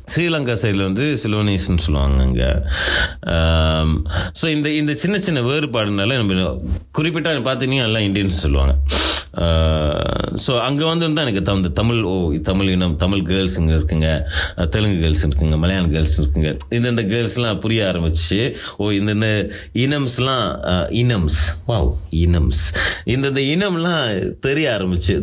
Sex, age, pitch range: male, 30-49, 80-110 Hz